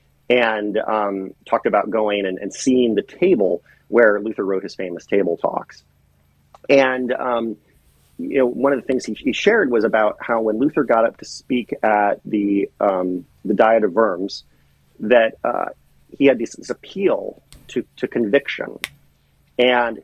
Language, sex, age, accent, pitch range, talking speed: English, male, 40-59, American, 100-125 Hz, 160 wpm